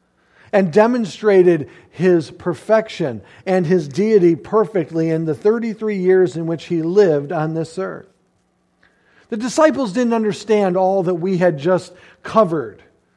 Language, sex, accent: English, male, American